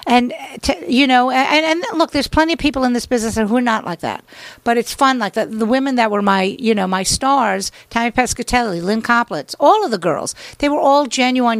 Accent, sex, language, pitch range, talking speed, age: American, female, English, 190-245 Hz, 240 wpm, 50-69